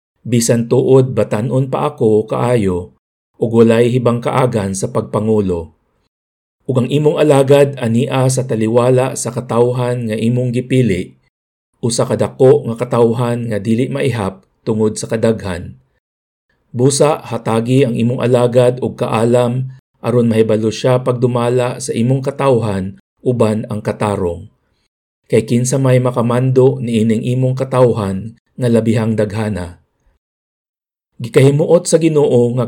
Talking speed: 120 wpm